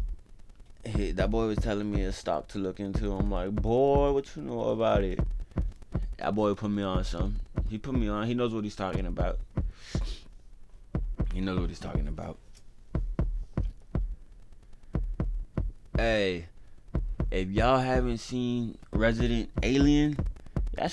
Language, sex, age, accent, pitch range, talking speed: English, male, 20-39, American, 80-110 Hz, 140 wpm